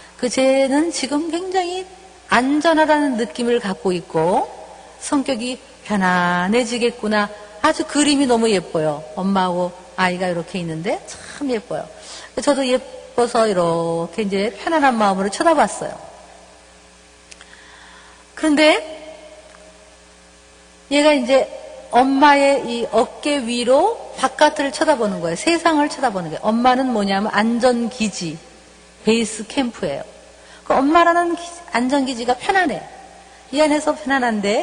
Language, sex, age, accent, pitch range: Korean, female, 50-69, native, 210-315 Hz